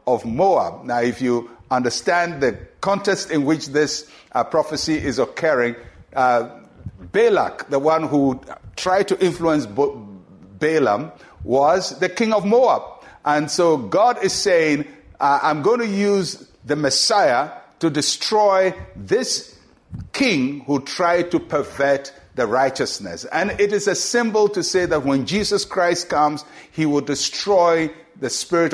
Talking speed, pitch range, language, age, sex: 140 wpm, 135-185 Hz, English, 60-79, male